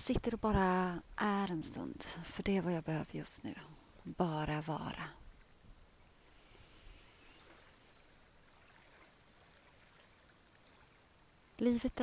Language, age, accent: Swedish, 30-49, native